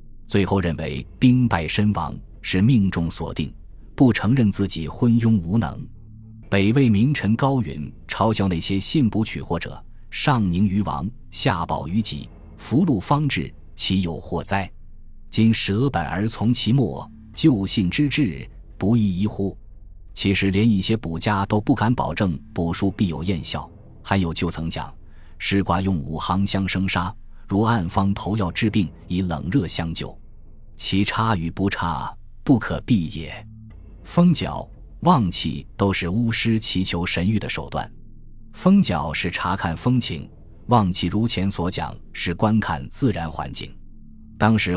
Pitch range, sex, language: 85-110 Hz, male, Chinese